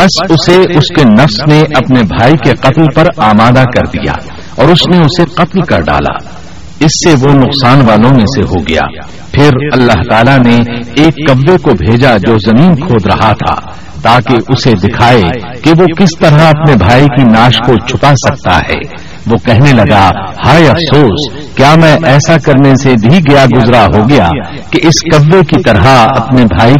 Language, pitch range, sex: Urdu, 105-150 Hz, male